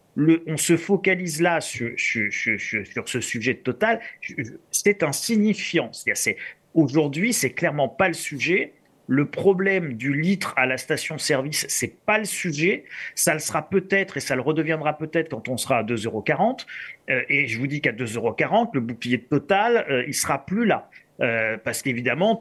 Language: French